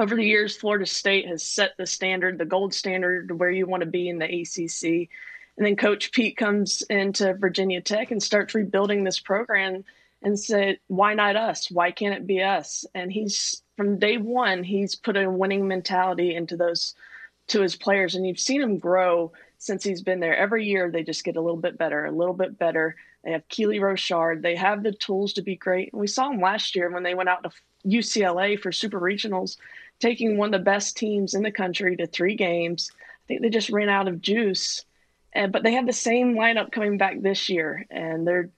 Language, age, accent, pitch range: English, 20-39, American, 175-205 Hz